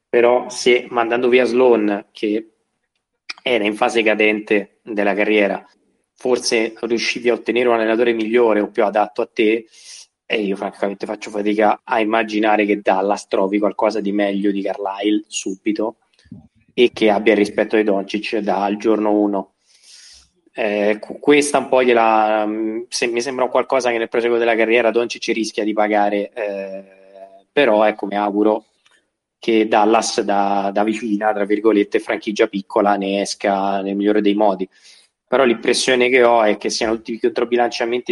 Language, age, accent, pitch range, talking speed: Italian, 20-39, native, 105-115 Hz, 155 wpm